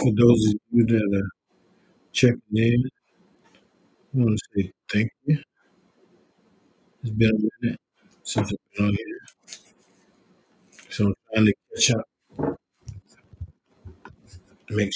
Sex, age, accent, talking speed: male, 50-69, American, 115 wpm